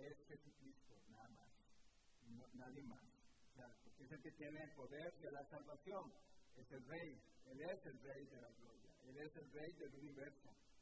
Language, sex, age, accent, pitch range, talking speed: English, male, 50-69, Mexican, 140-165 Hz, 195 wpm